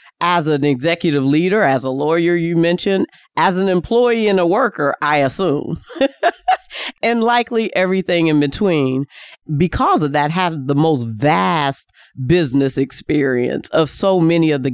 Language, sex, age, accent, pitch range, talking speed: English, female, 50-69, American, 140-190 Hz, 145 wpm